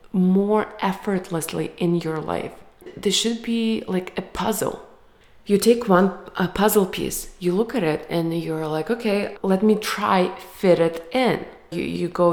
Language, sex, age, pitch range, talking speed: English, female, 20-39, 170-210 Hz, 160 wpm